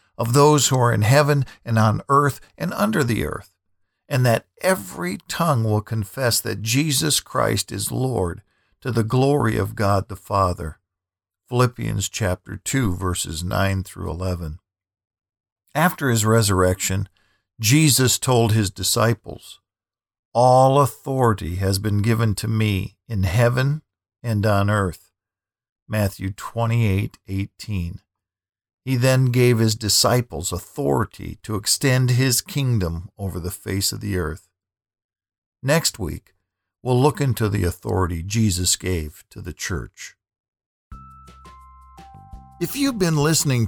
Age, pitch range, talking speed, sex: 50-69, 95-125 Hz, 125 wpm, male